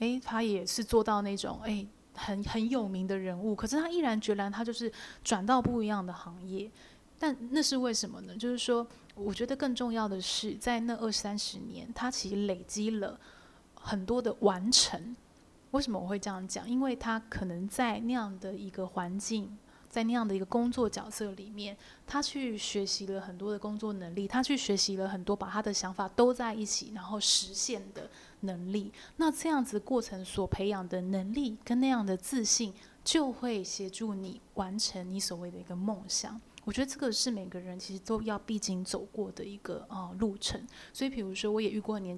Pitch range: 195-235 Hz